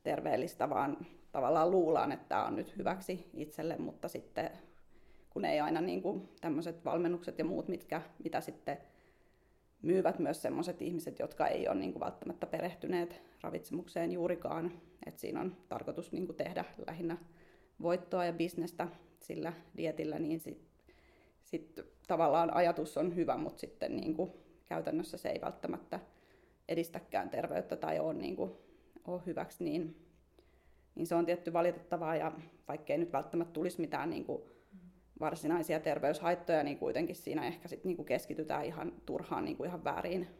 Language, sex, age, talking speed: Finnish, female, 30-49, 150 wpm